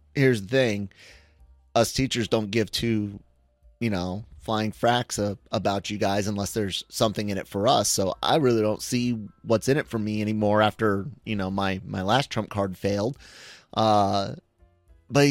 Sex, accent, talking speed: male, American, 175 wpm